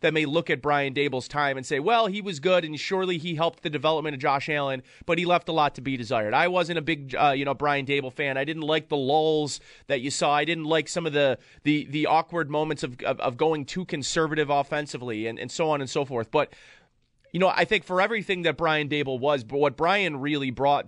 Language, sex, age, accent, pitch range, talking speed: English, male, 30-49, American, 140-170 Hz, 250 wpm